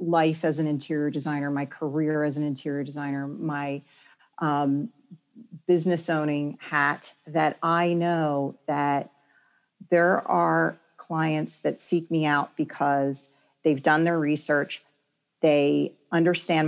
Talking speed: 120 wpm